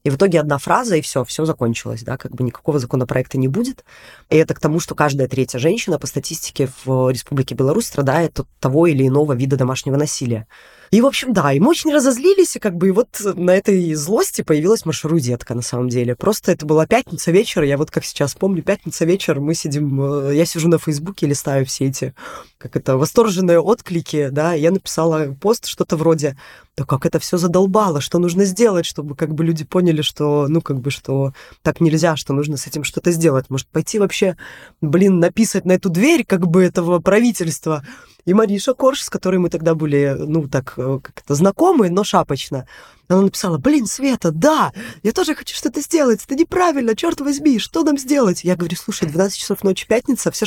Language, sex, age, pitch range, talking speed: Russian, female, 20-39, 145-200 Hz, 200 wpm